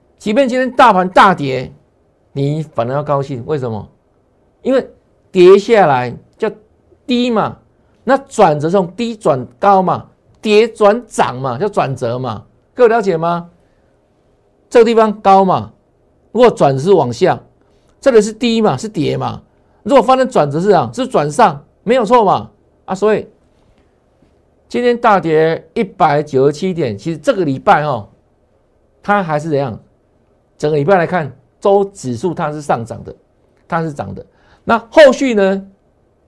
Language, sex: Chinese, male